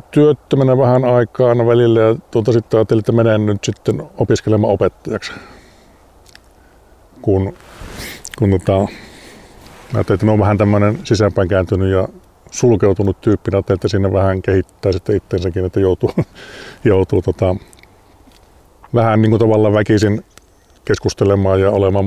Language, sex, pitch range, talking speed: Finnish, male, 95-110 Hz, 115 wpm